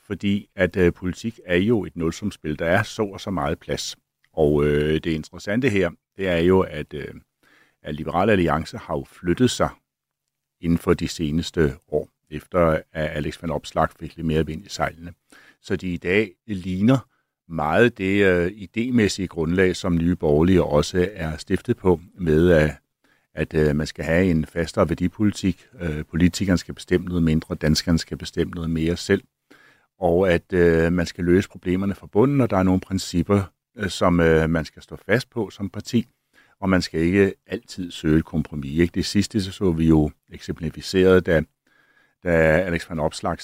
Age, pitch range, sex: 60-79, 80-100 Hz, male